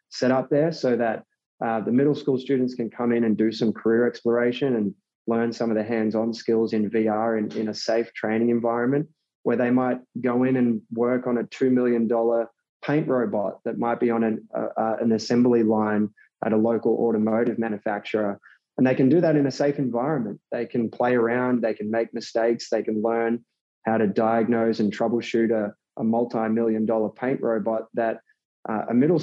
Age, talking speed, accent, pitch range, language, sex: 20-39, 200 wpm, Australian, 110-125 Hz, English, male